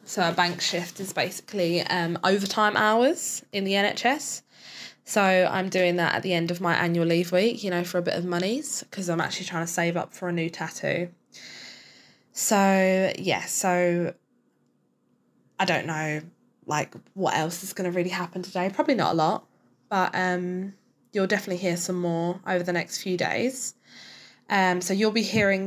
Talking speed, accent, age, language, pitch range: 180 wpm, British, 20-39, English, 170-205 Hz